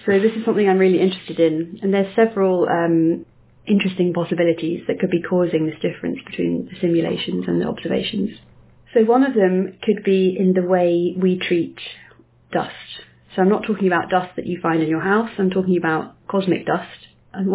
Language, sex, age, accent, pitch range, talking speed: English, female, 30-49, British, 165-195 Hz, 190 wpm